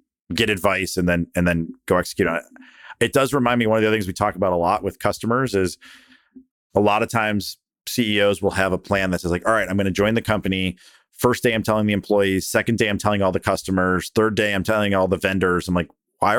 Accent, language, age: American, English, 40-59